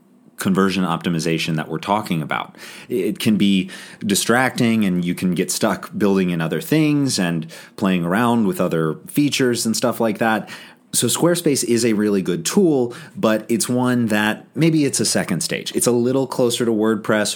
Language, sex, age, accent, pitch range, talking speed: English, male, 30-49, American, 90-120 Hz, 175 wpm